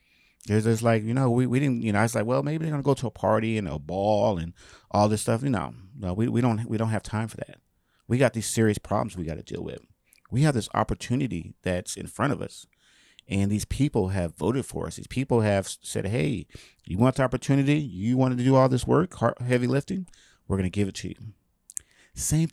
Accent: American